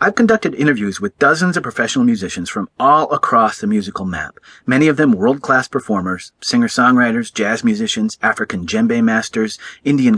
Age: 40-59